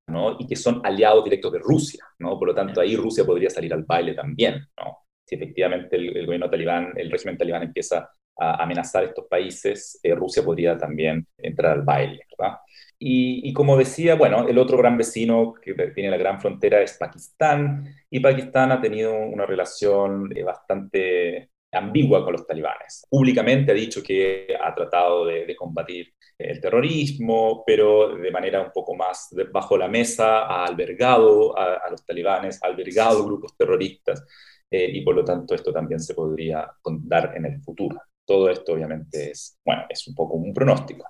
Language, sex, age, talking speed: Spanish, male, 30-49, 175 wpm